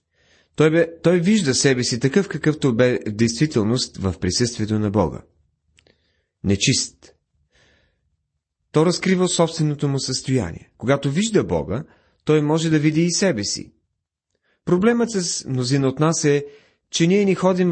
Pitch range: 115-165 Hz